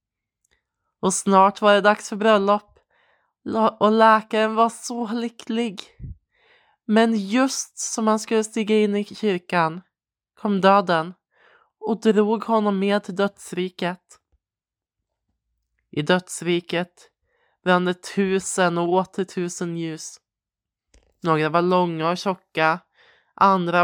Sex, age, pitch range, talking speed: male, 20-39, 165-215 Hz, 110 wpm